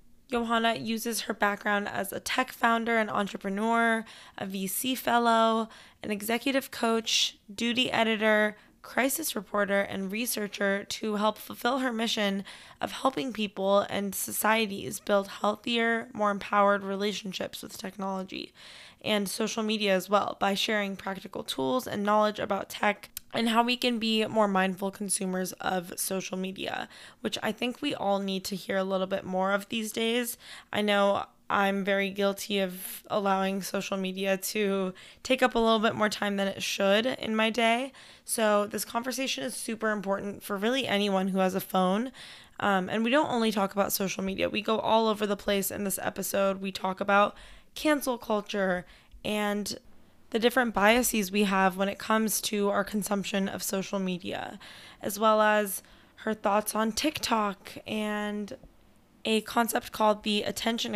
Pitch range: 195-225 Hz